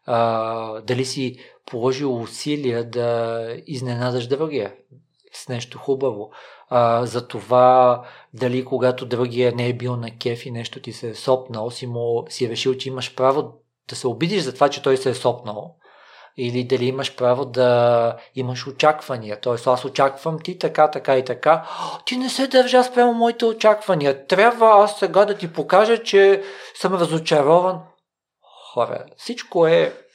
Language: Bulgarian